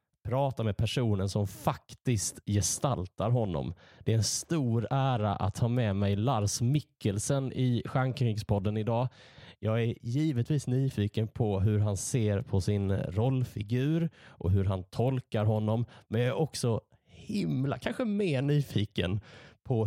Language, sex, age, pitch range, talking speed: Swedish, male, 30-49, 105-135 Hz, 140 wpm